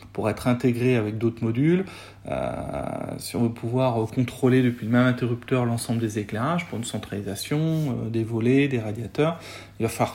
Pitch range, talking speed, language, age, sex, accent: 110-130 Hz, 185 wpm, French, 40-59, male, French